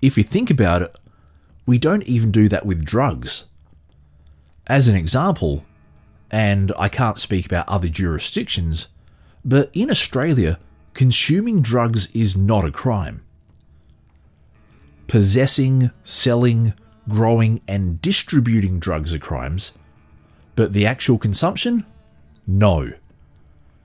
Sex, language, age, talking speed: male, English, 30-49, 110 wpm